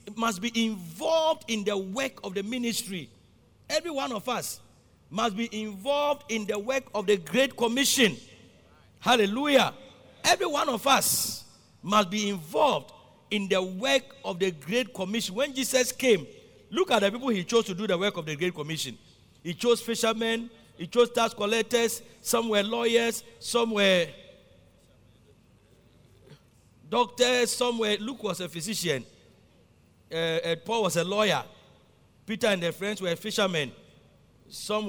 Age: 50-69